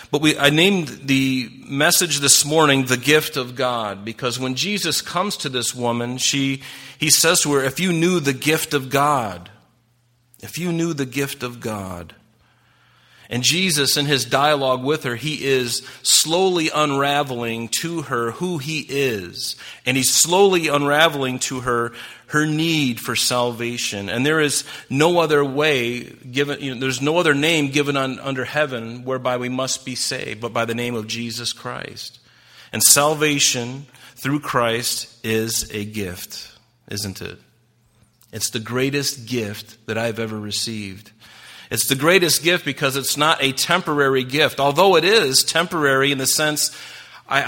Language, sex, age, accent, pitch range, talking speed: English, male, 40-59, American, 120-145 Hz, 160 wpm